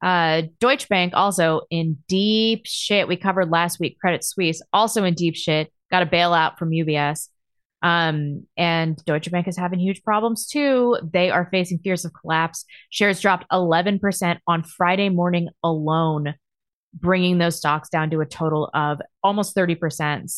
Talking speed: 160 wpm